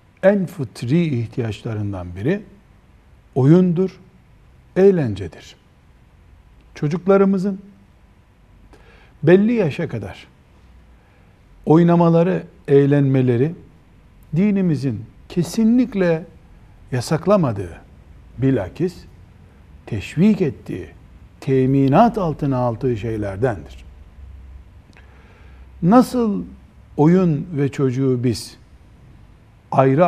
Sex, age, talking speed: male, 60-79, 55 wpm